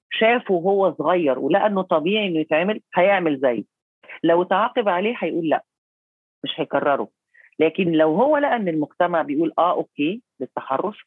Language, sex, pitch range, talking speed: Arabic, female, 155-205 Hz, 135 wpm